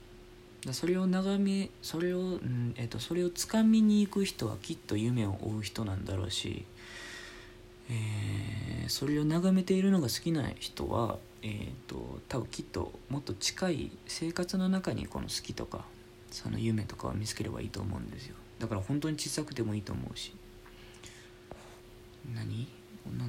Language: Japanese